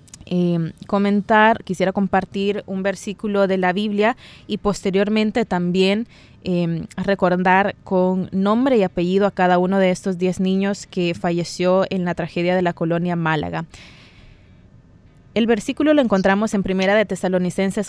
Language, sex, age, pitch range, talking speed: Spanish, female, 20-39, 180-210 Hz, 140 wpm